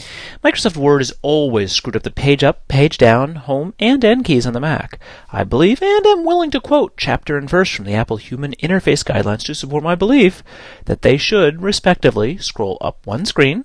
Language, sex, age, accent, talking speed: English, male, 30-49, American, 200 wpm